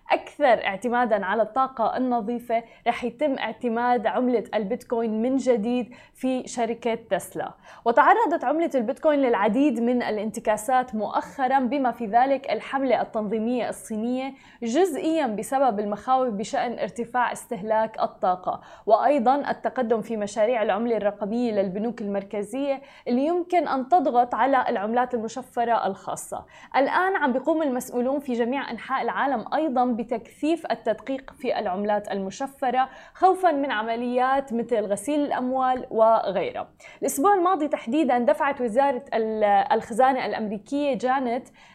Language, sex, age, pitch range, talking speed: Arabic, female, 20-39, 225-270 Hz, 115 wpm